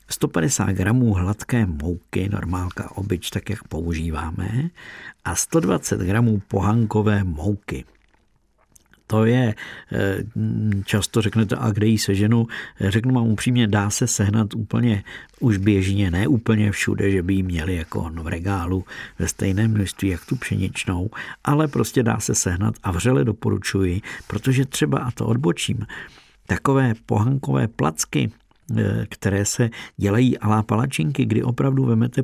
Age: 50-69